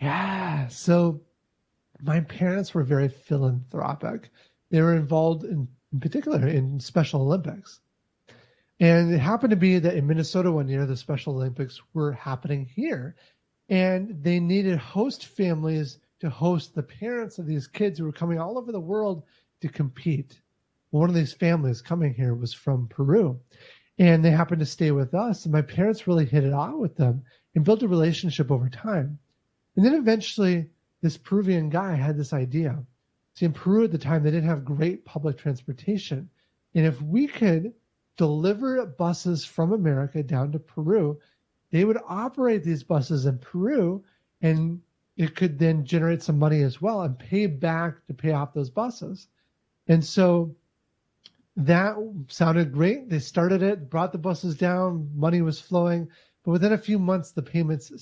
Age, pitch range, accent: 30-49, 145-180 Hz, American